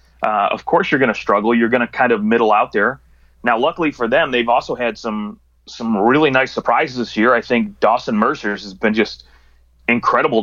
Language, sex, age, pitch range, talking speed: English, male, 30-49, 110-130 Hz, 200 wpm